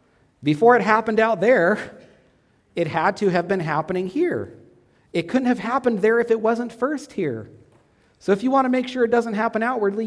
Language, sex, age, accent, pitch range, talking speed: English, male, 40-59, American, 130-195 Hz, 195 wpm